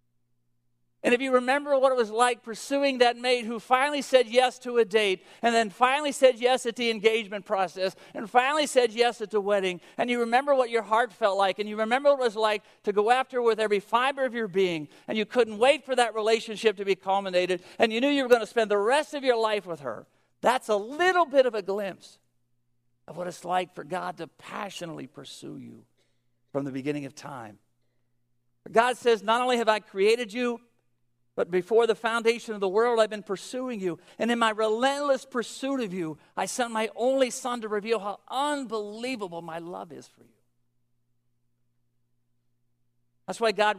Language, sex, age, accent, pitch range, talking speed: English, male, 50-69, American, 150-240 Hz, 205 wpm